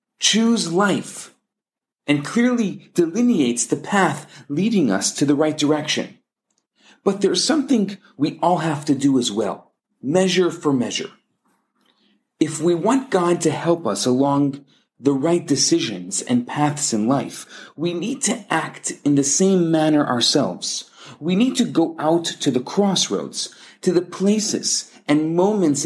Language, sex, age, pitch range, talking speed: English, male, 40-59, 145-200 Hz, 145 wpm